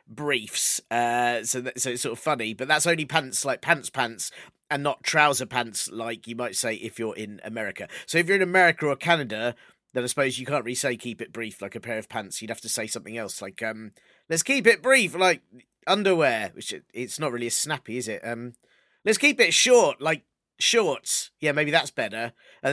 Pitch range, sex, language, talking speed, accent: 125-190 Hz, male, English, 220 wpm, British